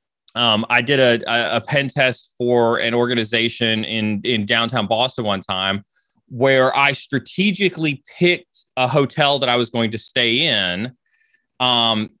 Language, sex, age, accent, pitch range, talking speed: English, male, 30-49, American, 110-140 Hz, 150 wpm